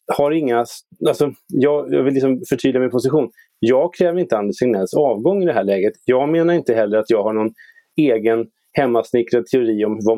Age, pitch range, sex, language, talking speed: 30-49, 115-160 Hz, male, Swedish, 195 wpm